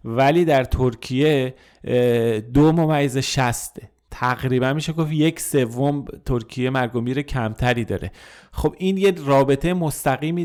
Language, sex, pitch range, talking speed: Persian, male, 115-140 Hz, 115 wpm